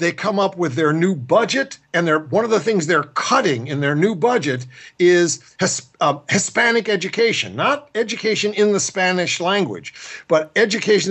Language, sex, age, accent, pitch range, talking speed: English, male, 50-69, American, 140-200 Hz, 160 wpm